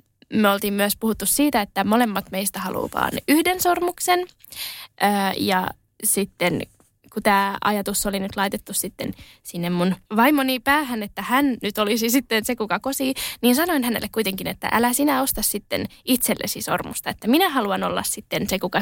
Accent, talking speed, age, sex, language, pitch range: native, 160 wpm, 10-29, female, Finnish, 195-265 Hz